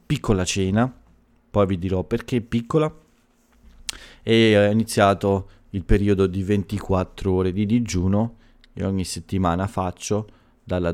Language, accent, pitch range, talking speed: Italian, native, 90-110 Hz, 120 wpm